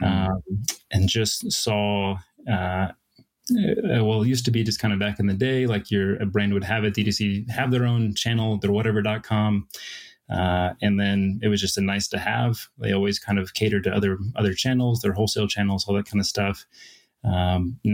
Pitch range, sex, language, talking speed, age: 100-115 Hz, male, English, 200 wpm, 20-39